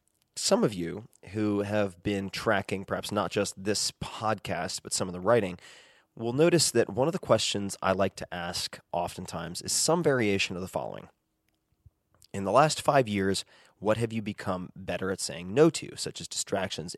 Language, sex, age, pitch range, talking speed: English, male, 30-49, 95-120 Hz, 185 wpm